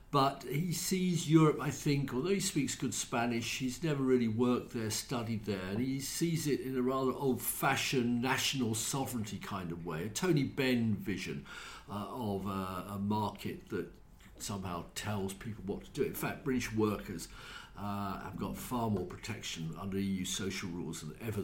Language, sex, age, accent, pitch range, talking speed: English, male, 50-69, British, 105-155 Hz, 175 wpm